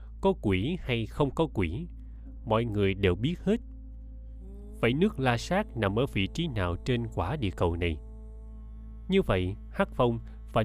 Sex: male